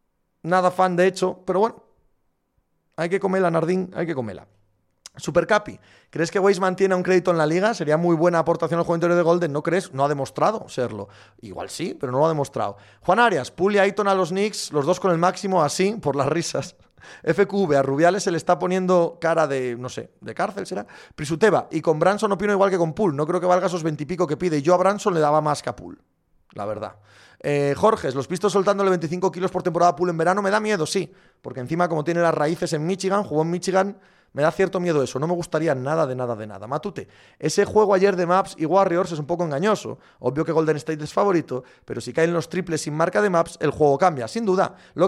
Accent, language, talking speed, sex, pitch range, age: Spanish, Spanish, 235 wpm, male, 150-190 Hz, 30-49